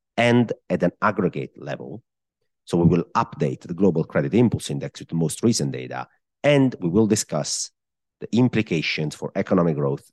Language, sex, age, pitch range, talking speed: English, male, 40-59, 75-130 Hz, 165 wpm